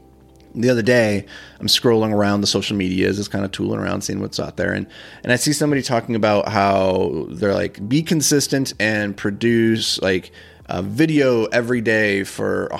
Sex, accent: male, American